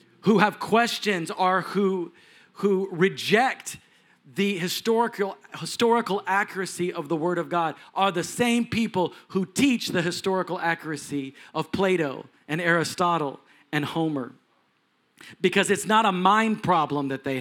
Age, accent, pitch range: 40-59, American, 155-200 Hz